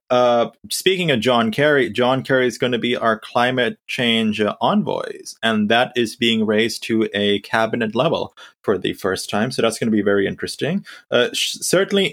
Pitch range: 110-150 Hz